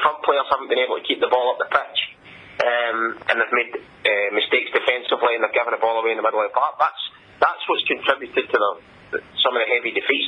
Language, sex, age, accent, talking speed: English, male, 30-49, British, 235 wpm